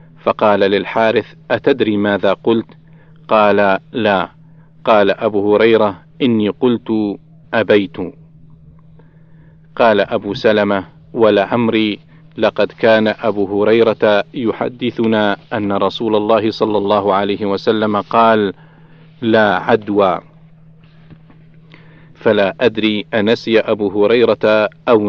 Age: 50-69